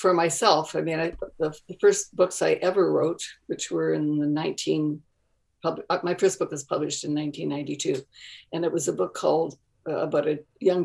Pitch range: 150-180 Hz